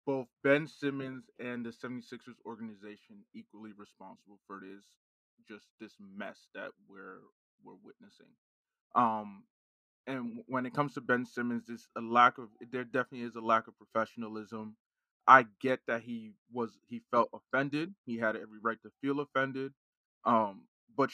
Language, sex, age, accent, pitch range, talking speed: English, male, 20-39, American, 115-165 Hz, 155 wpm